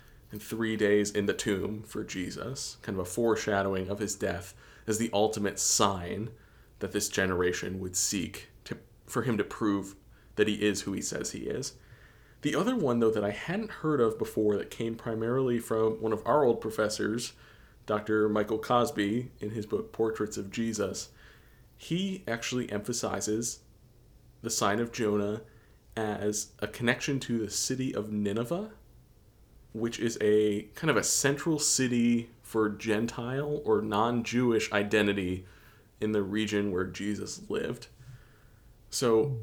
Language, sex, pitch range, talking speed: English, male, 105-120 Hz, 150 wpm